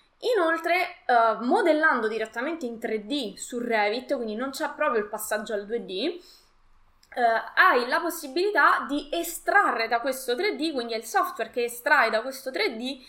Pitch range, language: 225-320 Hz, Italian